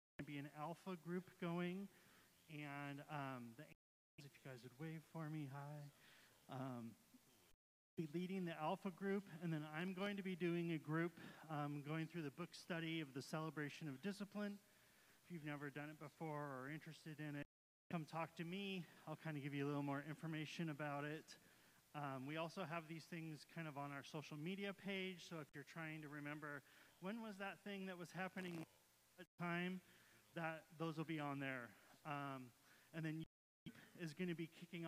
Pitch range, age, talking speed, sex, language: 150-180 Hz, 30-49, 190 wpm, male, English